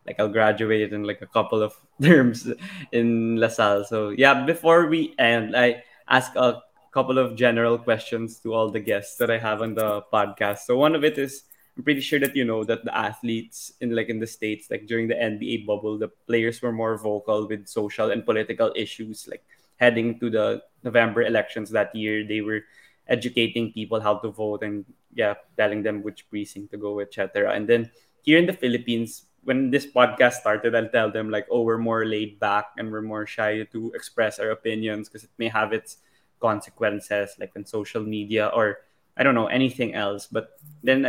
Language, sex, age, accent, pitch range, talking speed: Filipino, male, 20-39, native, 110-120 Hz, 200 wpm